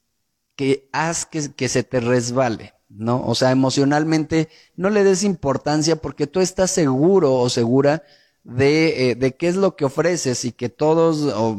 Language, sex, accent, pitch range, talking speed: Spanish, male, Mexican, 120-145 Hz, 170 wpm